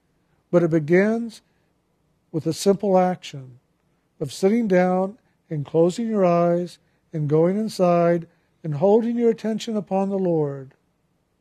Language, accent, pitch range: English, American, 160-200 Hz